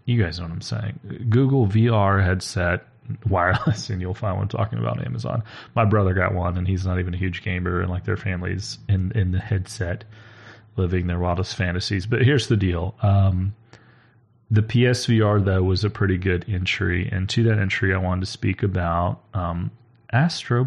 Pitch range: 95-120 Hz